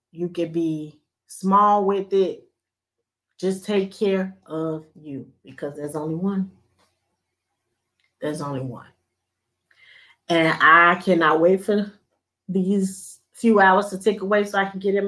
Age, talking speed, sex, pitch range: 30-49, 135 wpm, female, 160-210 Hz